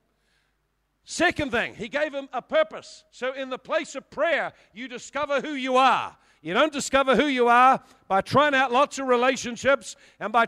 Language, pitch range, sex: English, 215-275 Hz, male